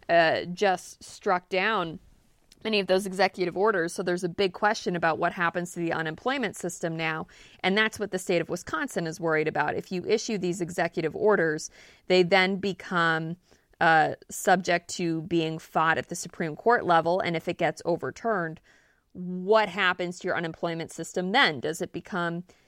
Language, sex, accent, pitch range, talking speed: English, female, American, 165-195 Hz, 175 wpm